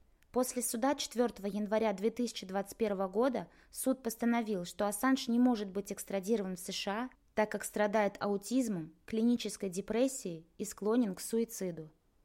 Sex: female